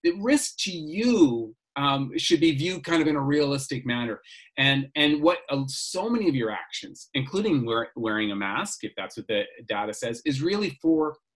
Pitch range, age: 120-170 Hz, 30-49